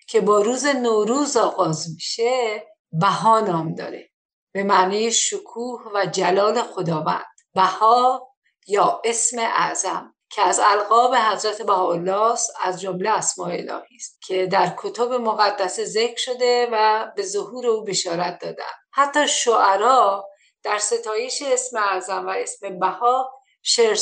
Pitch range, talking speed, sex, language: 210-260 Hz, 125 wpm, female, Persian